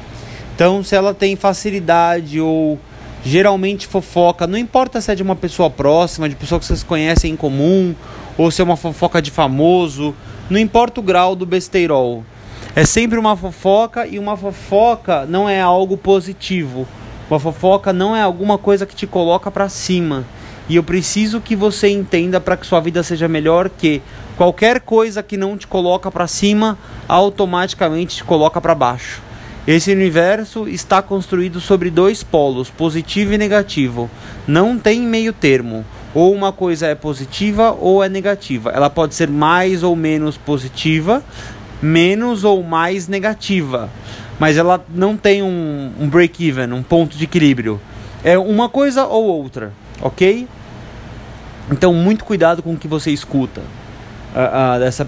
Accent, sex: Brazilian, male